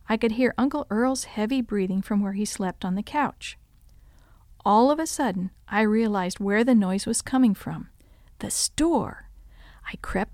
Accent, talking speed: American, 175 wpm